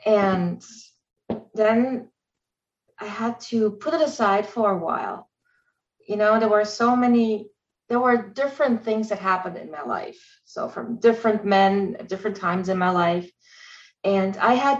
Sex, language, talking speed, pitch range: female, English, 160 wpm, 190-235 Hz